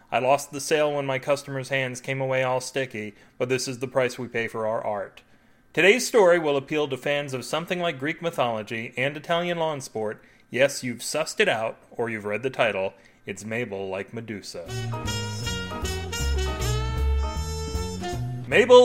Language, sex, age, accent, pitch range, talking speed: English, male, 30-49, American, 110-150 Hz, 165 wpm